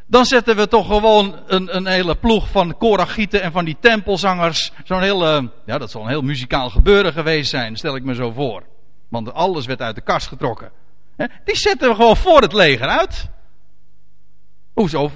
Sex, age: male, 50-69